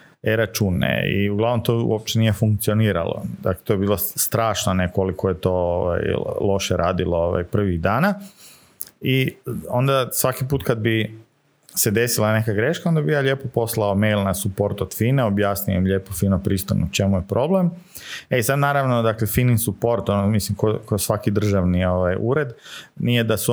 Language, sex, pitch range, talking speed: Croatian, male, 100-130 Hz, 170 wpm